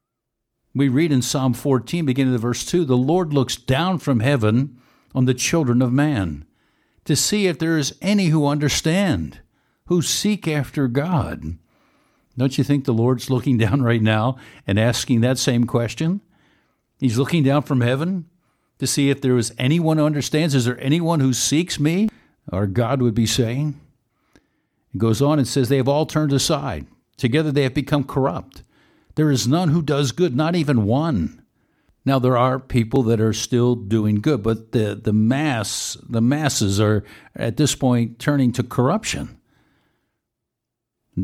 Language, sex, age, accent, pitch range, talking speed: English, male, 60-79, American, 120-150 Hz, 170 wpm